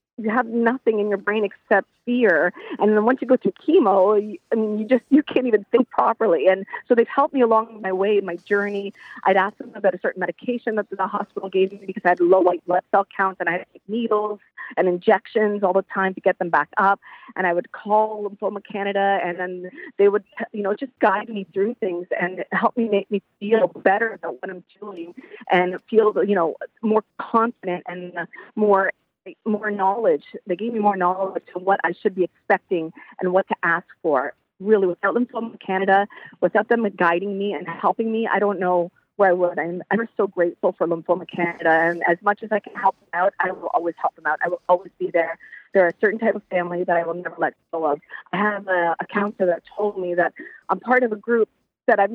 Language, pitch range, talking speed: English, 180-220 Hz, 225 wpm